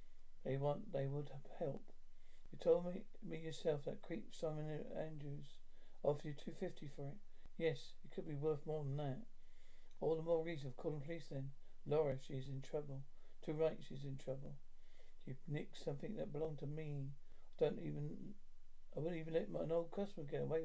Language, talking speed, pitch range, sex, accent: English, 195 wpm, 135-165 Hz, male, British